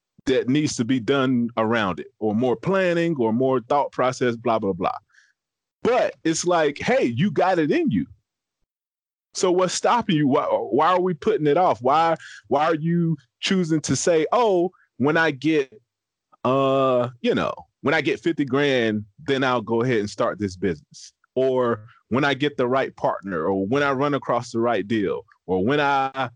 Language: English